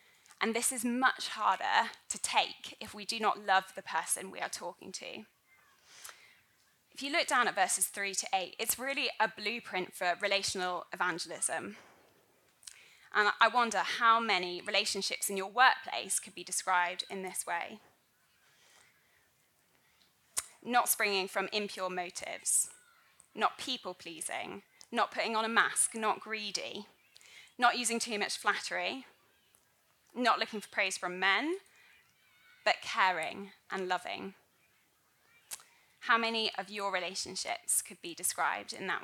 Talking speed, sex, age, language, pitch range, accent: 135 wpm, female, 20-39, English, 190-235 Hz, British